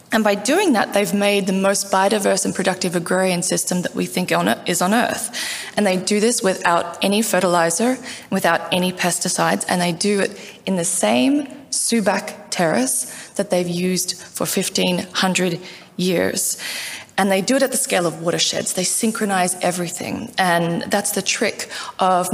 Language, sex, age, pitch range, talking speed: German, female, 20-39, 180-220 Hz, 170 wpm